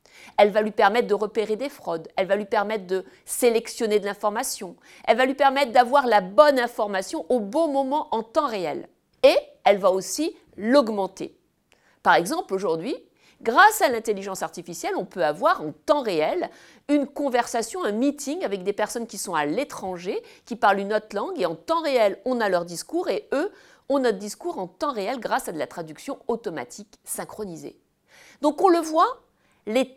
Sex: female